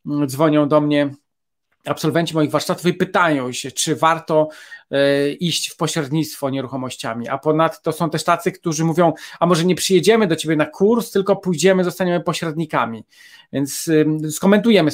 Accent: native